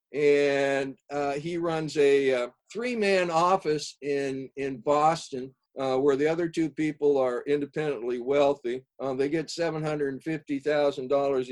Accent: American